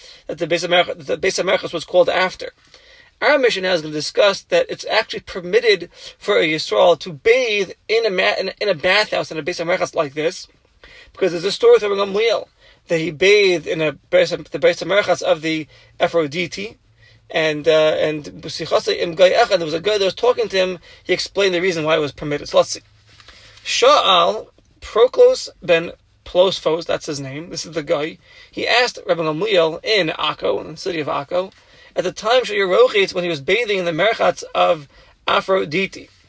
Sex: male